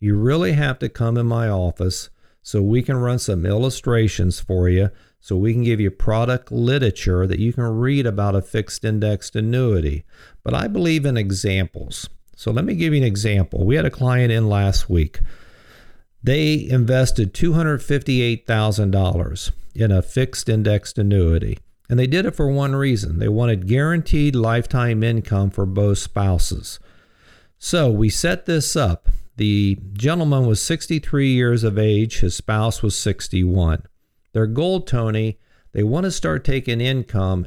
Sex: male